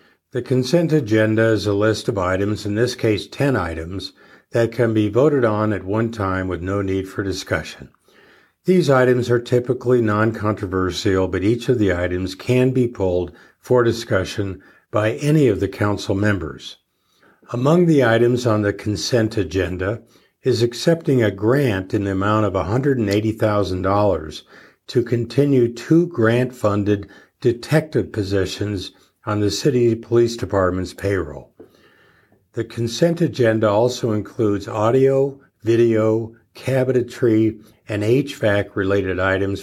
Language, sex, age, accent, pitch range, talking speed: English, male, 60-79, American, 100-125 Hz, 130 wpm